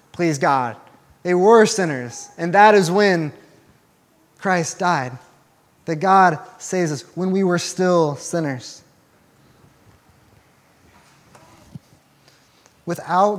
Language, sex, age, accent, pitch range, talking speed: English, male, 20-39, American, 145-185 Hz, 95 wpm